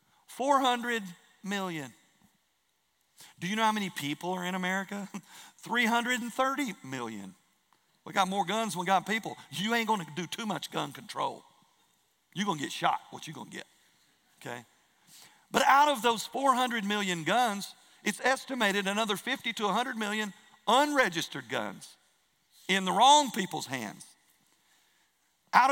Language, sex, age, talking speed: English, male, 50-69, 140 wpm